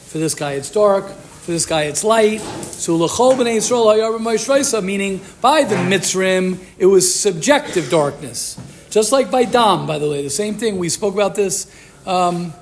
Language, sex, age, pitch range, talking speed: English, male, 50-69, 175-220 Hz, 160 wpm